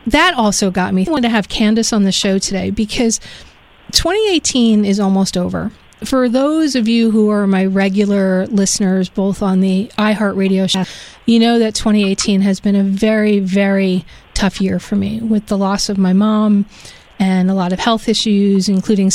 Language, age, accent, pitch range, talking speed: English, 40-59, American, 195-230 Hz, 180 wpm